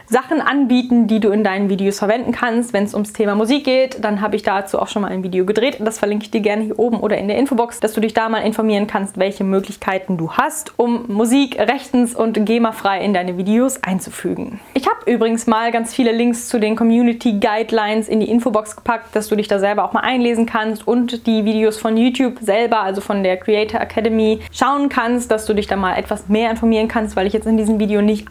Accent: German